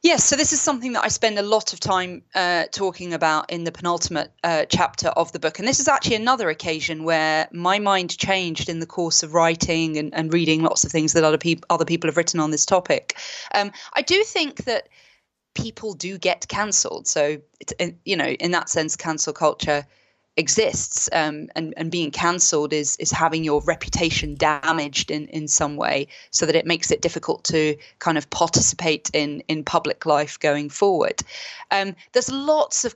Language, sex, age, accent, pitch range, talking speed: English, female, 20-39, British, 160-200 Hz, 195 wpm